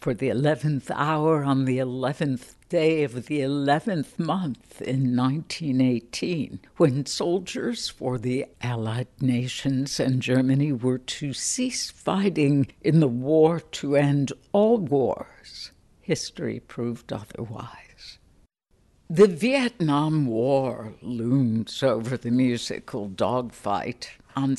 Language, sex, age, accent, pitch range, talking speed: English, female, 60-79, American, 125-160 Hz, 110 wpm